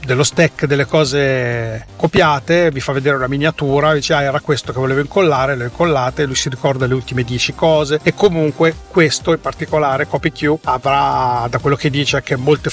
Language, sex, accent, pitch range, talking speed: Italian, male, native, 135-155 Hz, 190 wpm